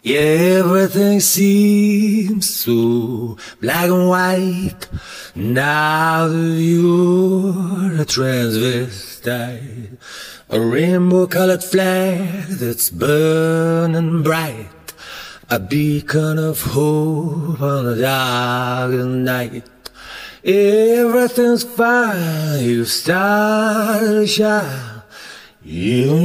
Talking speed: 80 wpm